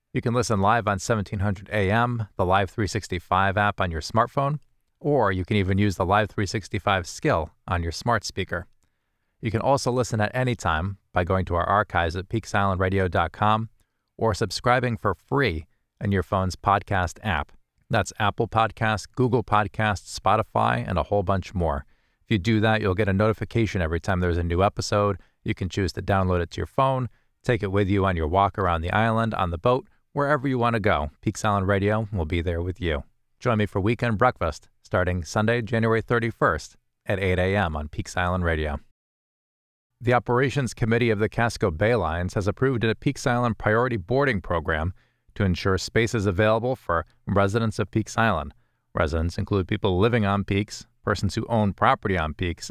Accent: American